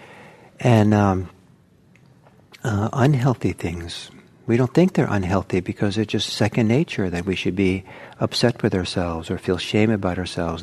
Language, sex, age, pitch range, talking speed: English, male, 60-79, 100-135 Hz, 150 wpm